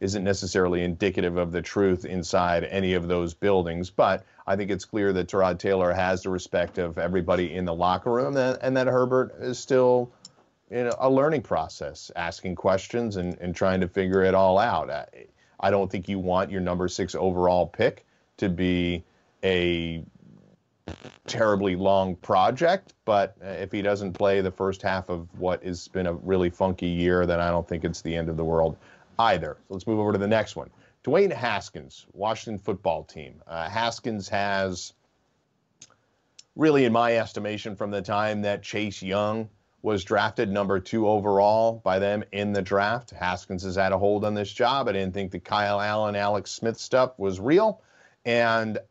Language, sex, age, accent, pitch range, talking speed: English, male, 40-59, American, 90-105 Hz, 180 wpm